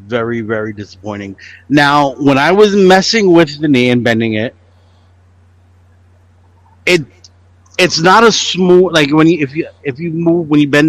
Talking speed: 165 wpm